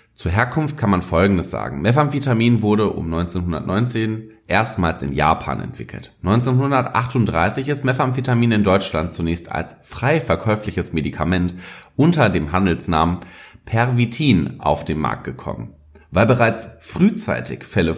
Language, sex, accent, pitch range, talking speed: German, male, German, 85-115 Hz, 120 wpm